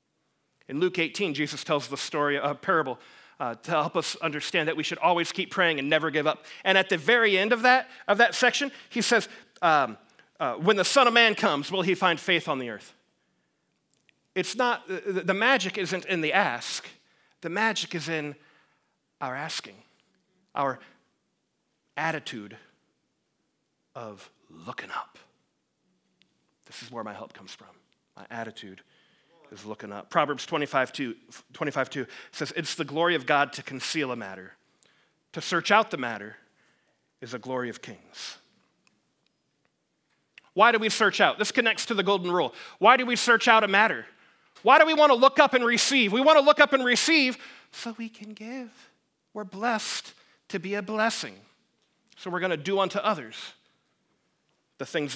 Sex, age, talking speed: male, 40-59, 175 wpm